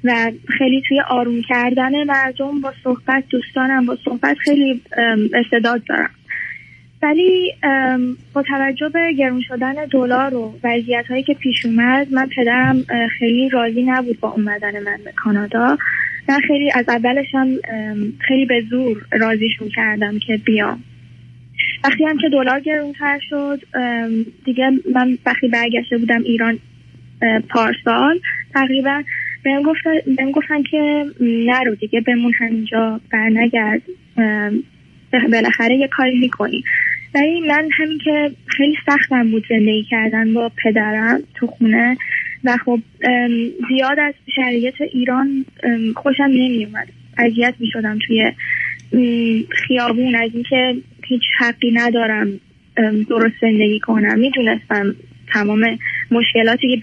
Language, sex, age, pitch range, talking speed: Persian, female, 20-39, 230-275 Hz, 120 wpm